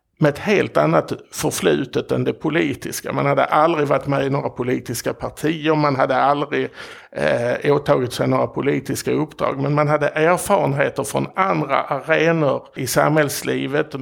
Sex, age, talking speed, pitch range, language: male, 60-79, 145 wpm, 130-150 Hz, Swedish